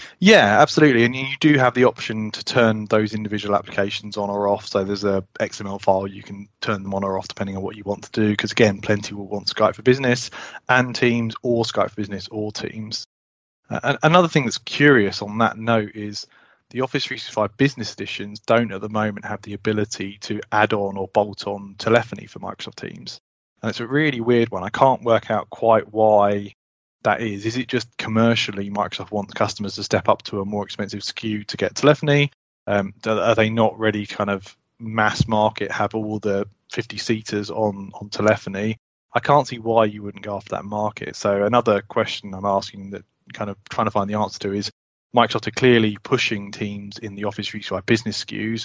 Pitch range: 100-115 Hz